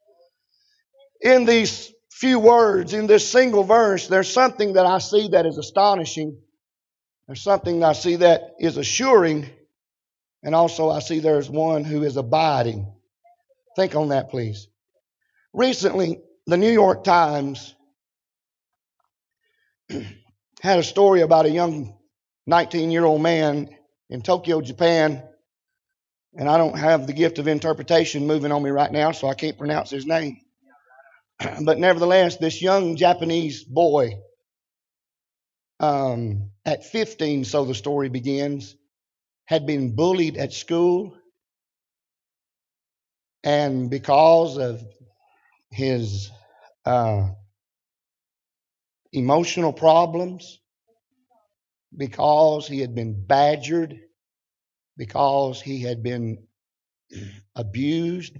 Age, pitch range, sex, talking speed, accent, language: 50-69, 135-180 Hz, male, 110 wpm, American, English